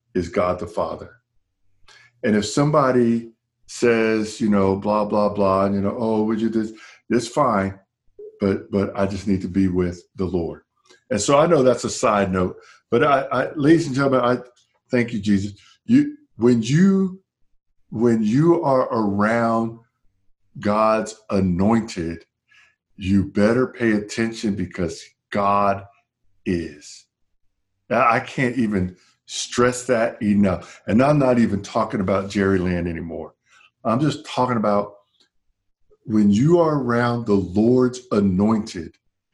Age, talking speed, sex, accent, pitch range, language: 50-69, 145 wpm, male, American, 100-125 Hz, English